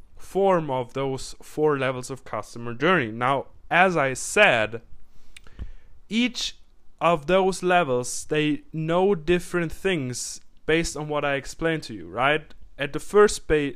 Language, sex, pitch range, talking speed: English, male, 125-175 Hz, 140 wpm